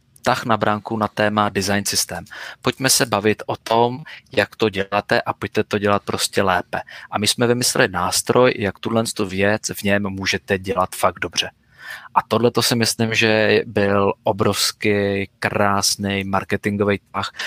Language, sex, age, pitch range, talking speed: Czech, male, 20-39, 100-110 Hz, 155 wpm